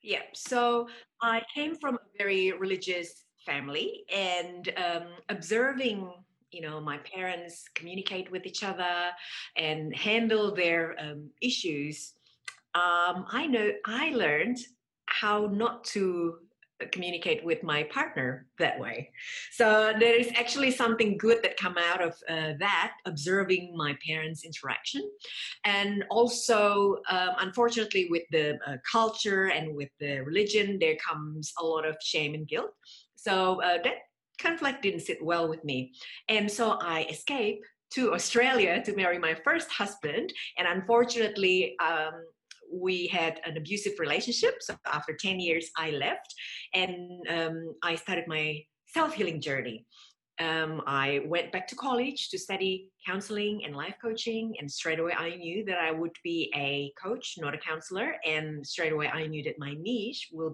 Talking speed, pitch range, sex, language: 150 wpm, 160-225 Hz, female, English